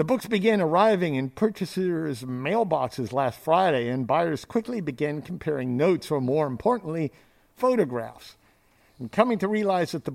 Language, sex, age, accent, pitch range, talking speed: English, male, 50-69, American, 130-180 Hz, 150 wpm